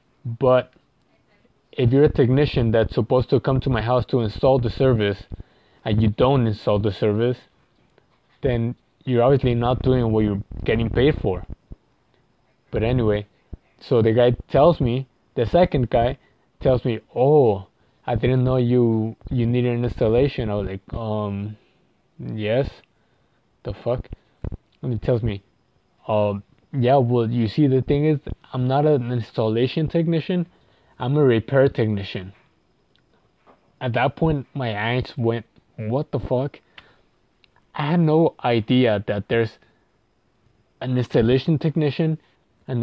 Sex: male